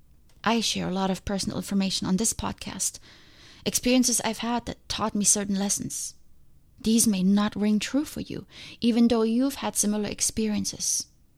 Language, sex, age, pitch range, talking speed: English, female, 20-39, 190-230 Hz, 165 wpm